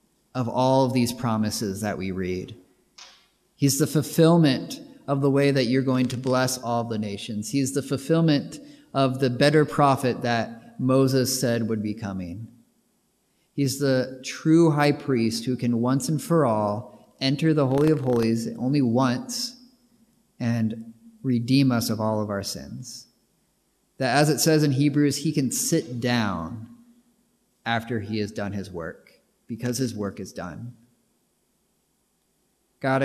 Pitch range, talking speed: 115-145 Hz, 150 wpm